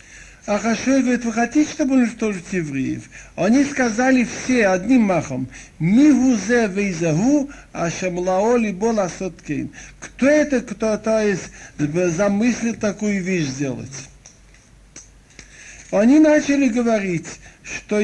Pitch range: 180-255 Hz